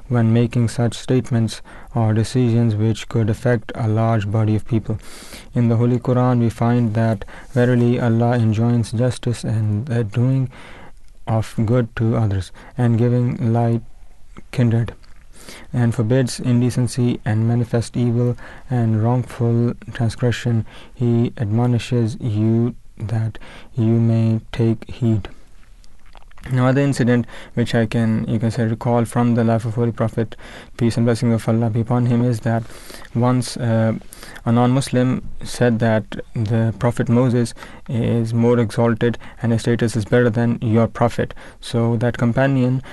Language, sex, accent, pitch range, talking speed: English, male, Indian, 115-120 Hz, 145 wpm